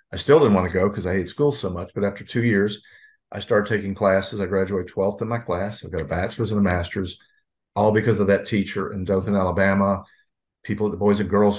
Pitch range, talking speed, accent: 100-120 Hz, 245 wpm, American